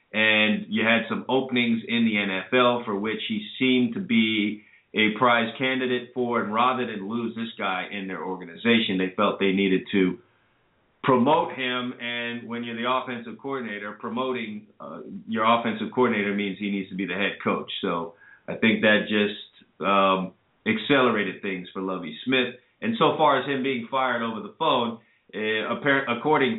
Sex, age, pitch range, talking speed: male, 30-49, 95-125 Hz, 170 wpm